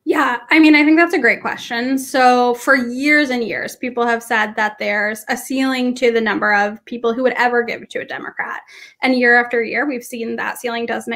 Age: 10-29